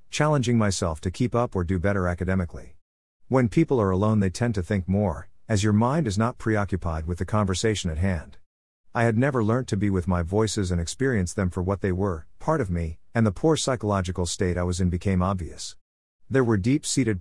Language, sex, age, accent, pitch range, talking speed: English, male, 50-69, American, 90-115 Hz, 215 wpm